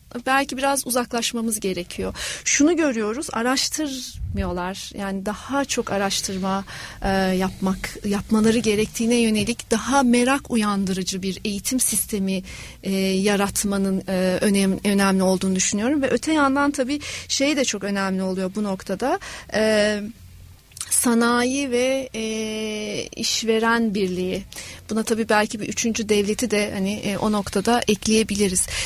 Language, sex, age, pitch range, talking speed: Turkish, female, 40-59, 205-245 Hz, 110 wpm